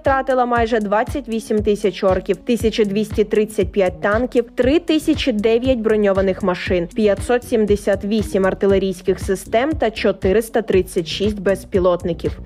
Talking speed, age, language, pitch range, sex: 75 wpm, 20-39, Ukrainian, 200-260 Hz, female